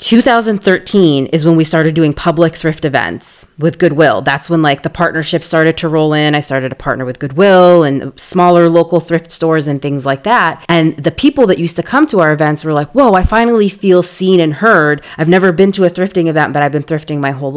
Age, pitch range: 30-49, 150-180 Hz